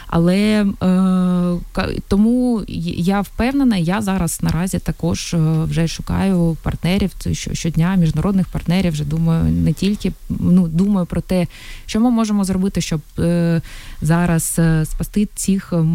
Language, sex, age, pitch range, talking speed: Ukrainian, female, 20-39, 160-180 Hz, 115 wpm